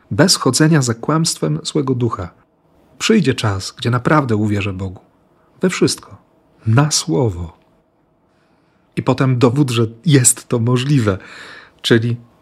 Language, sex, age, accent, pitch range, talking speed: Polish, male, 40-59, native, 115-155 Hz, 115 wpm